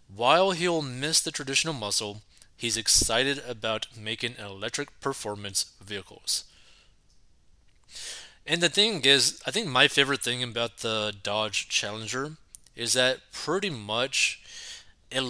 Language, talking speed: English, 120 wpm